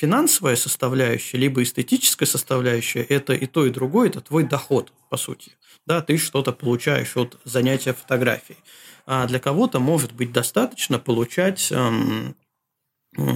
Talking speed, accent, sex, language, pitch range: 130 wpm, native, male, Russian, 125-160 Hz